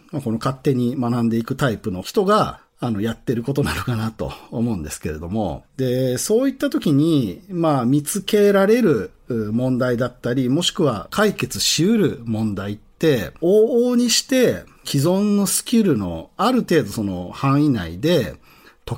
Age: 40-59